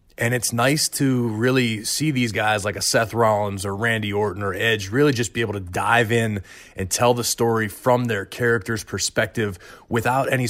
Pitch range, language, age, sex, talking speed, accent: 100-120 Hz, English, 30-49, male, 195 wpm, American